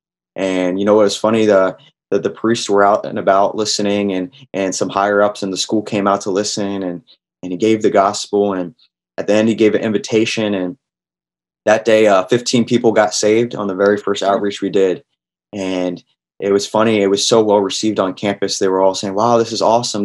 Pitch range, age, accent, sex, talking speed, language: 95-110 Hz, 20-39, American, male, 225 wpm, English